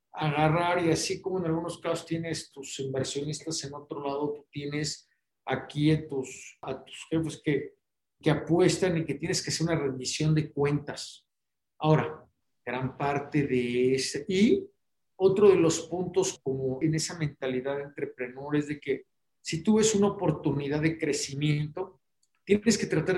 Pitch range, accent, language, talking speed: 150-195 Hz, Mexican, Spanish, 160 wpm